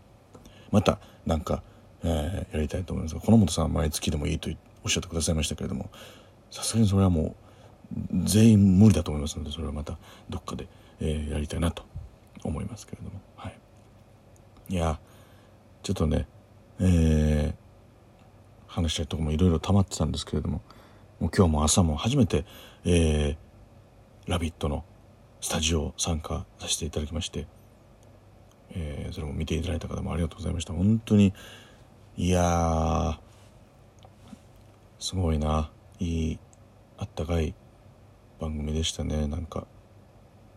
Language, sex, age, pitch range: Japanese, male, 40-59, 85-110 Hz